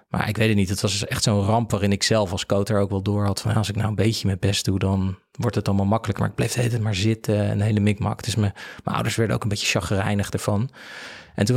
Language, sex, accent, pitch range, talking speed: Dutch, male, Dutch, 105-120 Hz, 290 wpm